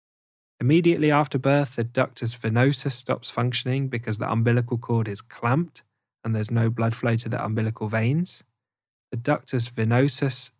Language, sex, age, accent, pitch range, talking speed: English, male, 20-39, British, 115-135 Hz, 145 wpm